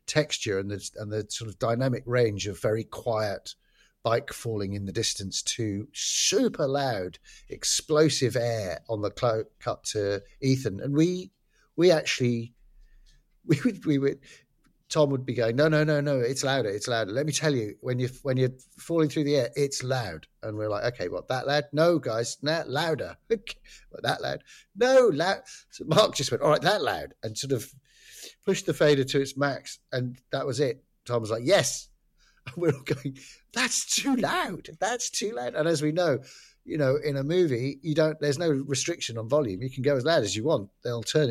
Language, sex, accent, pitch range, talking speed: English, male, British, 115-155 Hz, 200 wpm